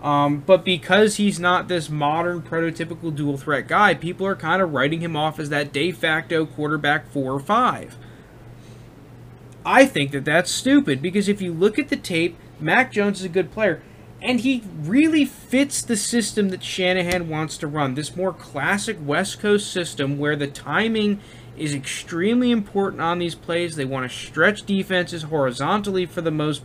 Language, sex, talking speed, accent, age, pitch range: English, male, 175 wpm, American, 20-39, 150-210 Hz